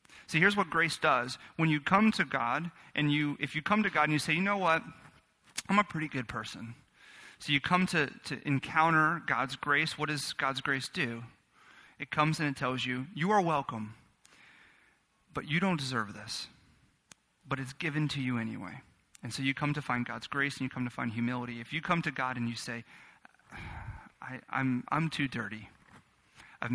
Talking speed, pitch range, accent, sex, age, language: 200 wpm, 125-150 Hz, American, male, 30-49, English